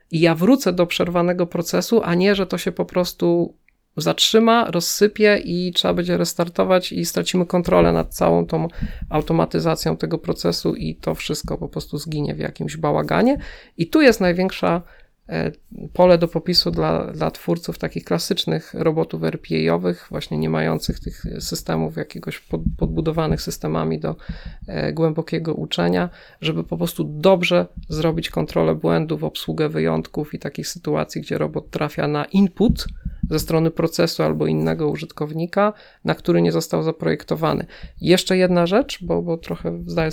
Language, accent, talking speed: Polish, native, 145 wpm